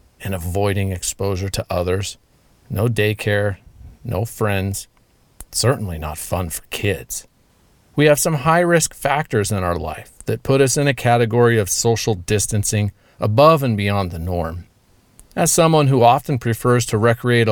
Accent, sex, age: American, male, 40-59